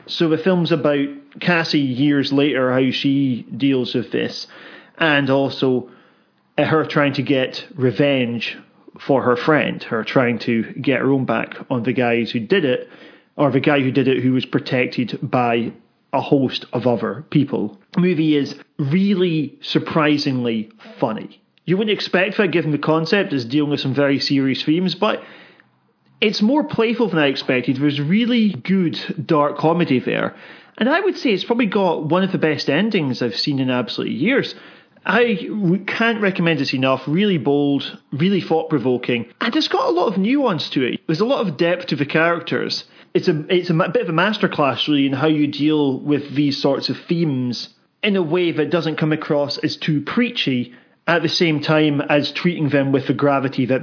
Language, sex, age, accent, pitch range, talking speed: English, male, 40-59, British, 135-180 Hz, 185 wpm